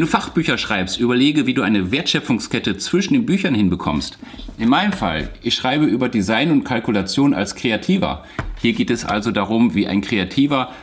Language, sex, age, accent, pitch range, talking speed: German, male, 40-59, German, 100-140 Hz, 175 wpm